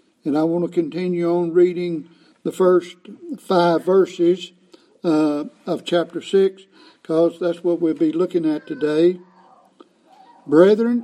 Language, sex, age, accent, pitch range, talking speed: English, male, 60-79, American, 170-220 Hz, 130 wpm